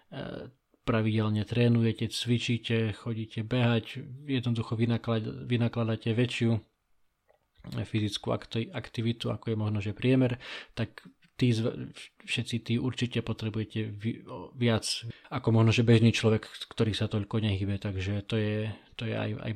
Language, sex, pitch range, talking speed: Slovak, male, 110-120 Hz, 110 wpm